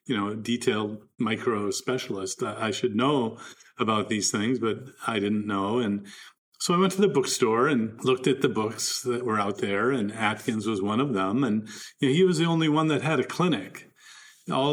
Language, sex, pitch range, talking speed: English, male, 115-135 Hz, 210 wpm